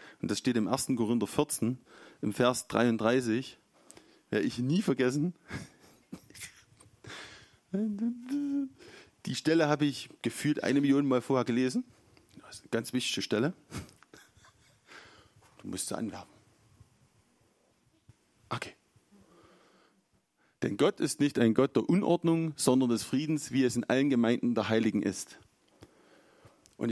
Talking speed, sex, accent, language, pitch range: 125 wpm, male, German, German, 110-145 Hz